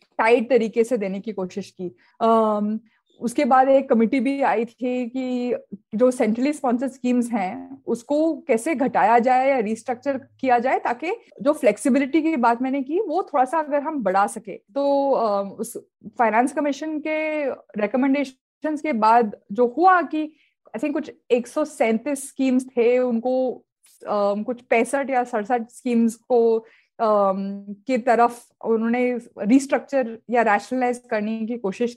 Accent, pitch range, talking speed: native, 225-280 Hz, 150 wpm